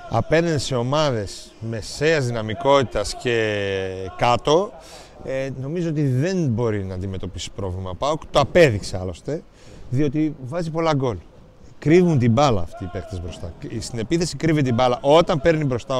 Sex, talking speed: male, 145 wpm